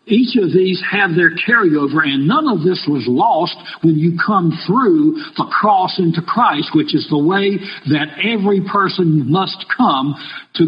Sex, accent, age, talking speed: male, American, 60-79, 170 wpm